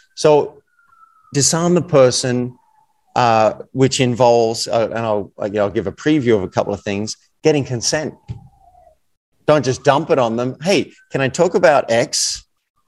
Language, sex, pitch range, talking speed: English, male, 110-140 Hz, 155 wpm